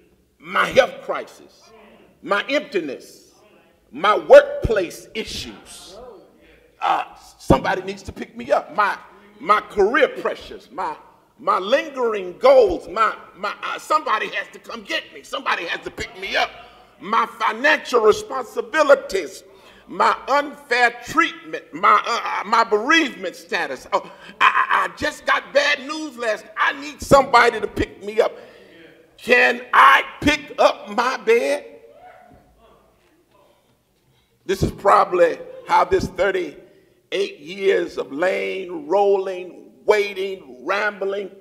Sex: male